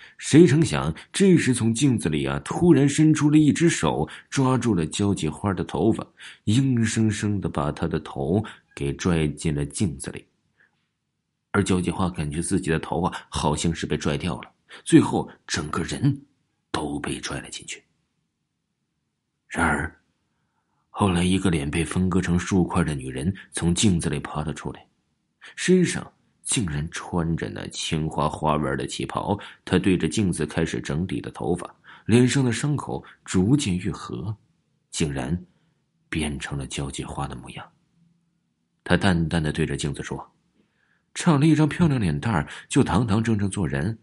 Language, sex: Chinese, male